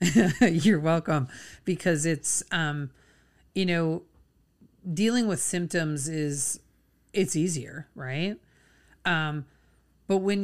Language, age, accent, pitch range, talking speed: English, 30-49, American, 145-180 Hz, 100 wpm